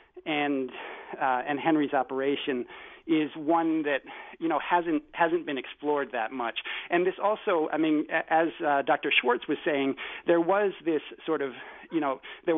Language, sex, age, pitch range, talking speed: English, male, 40-59, 135-175 Hz, 165 wpm